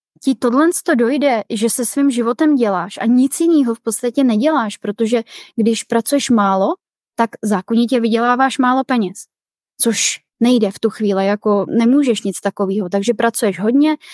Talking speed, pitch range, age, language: 155 wpm, 210-250 Hz, 20-39, Czech